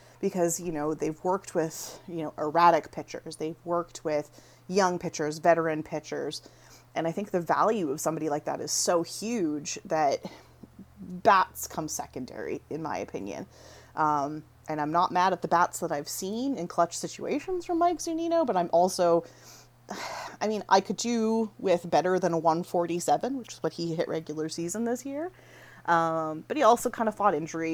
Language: English